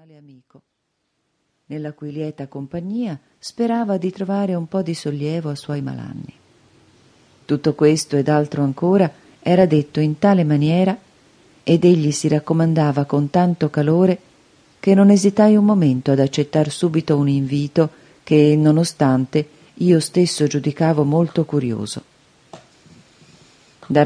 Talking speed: 125 wpm